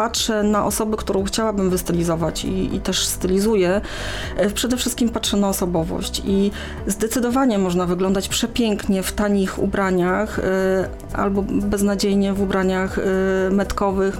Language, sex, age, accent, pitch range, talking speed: Polish, female, 30-49, native, 195-215 Hz, 120 wpm